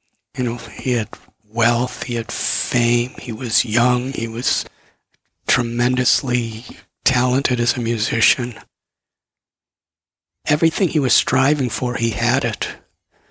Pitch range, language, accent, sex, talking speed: 120-145 Hz, English, American, male, 115 wpm